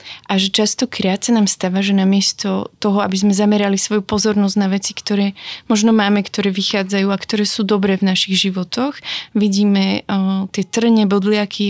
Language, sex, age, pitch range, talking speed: Slovak, female, 20-39, 190-210 Hz, 170 wpm